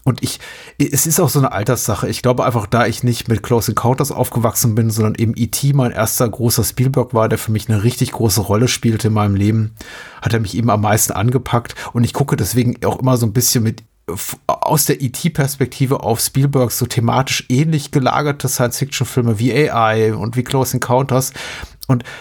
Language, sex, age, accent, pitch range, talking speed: German, male, 30-49, German, 115-135 Hz, 195 wpm